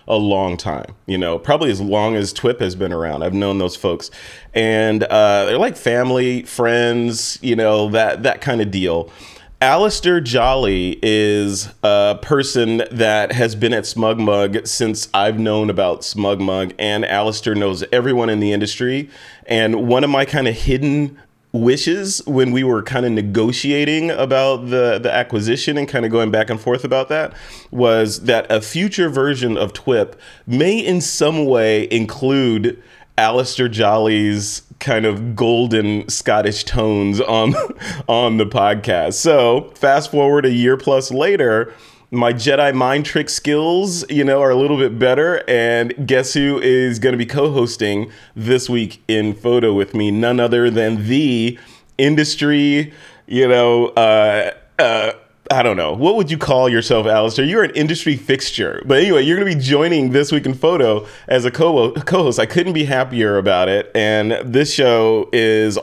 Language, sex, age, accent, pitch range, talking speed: English, male, 30-49, American, 110-135 Hz, 165 wpm